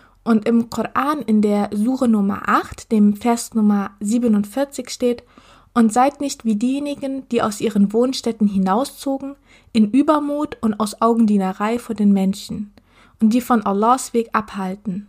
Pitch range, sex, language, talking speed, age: 210-245 Hz, female, German, 145 wpm, 20-39